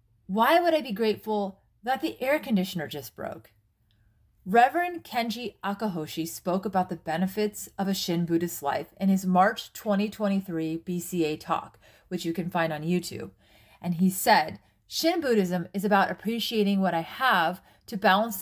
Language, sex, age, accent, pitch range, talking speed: English, female, 30-49, American, 170-220 Hz, 155 wpm